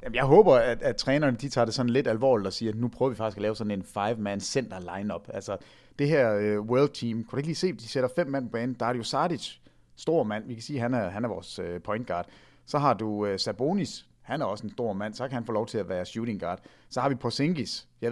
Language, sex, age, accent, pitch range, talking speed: English, male, 30-49, Danish, 105-130 Hz, 255 wpm